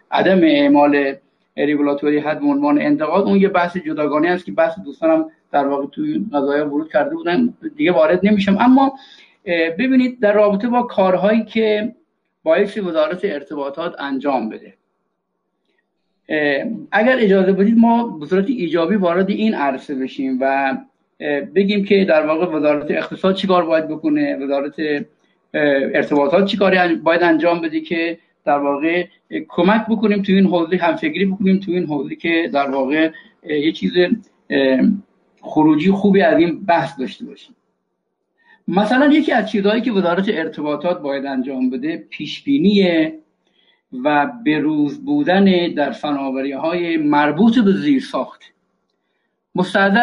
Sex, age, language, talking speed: male, 50-69, Persian, 130 wpm